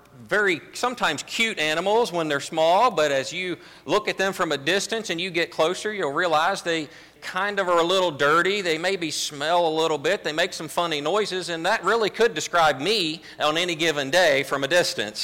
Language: English